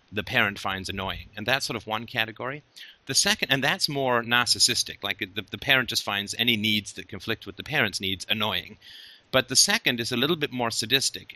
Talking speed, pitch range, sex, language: 210 wpm, 105-130 Hz, male, English